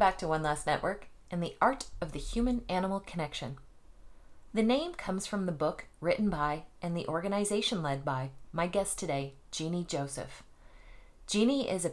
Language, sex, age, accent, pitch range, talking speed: English, female, 30-49, American, 150-195 Hz, 170 wpm